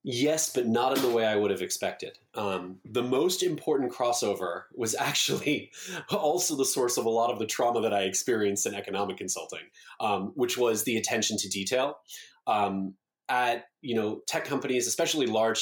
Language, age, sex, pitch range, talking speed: English, 20-39, male, 110-155 Hz, 180 wpm